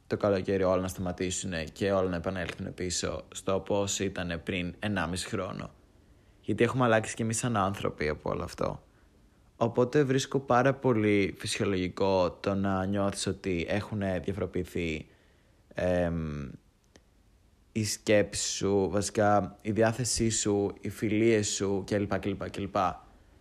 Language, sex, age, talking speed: Greek, male, 20-39, 125 wpm